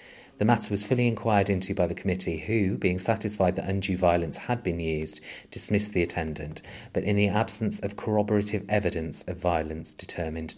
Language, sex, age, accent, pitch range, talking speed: English, male, 30-49, British, 90-115 Hz, 175 wpm